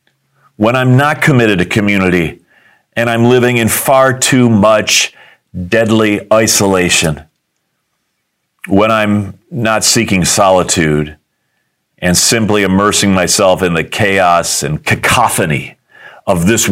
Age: 40-59